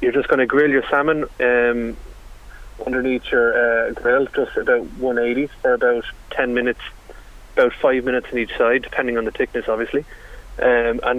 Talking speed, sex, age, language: 170 wpm, male, 30-49, English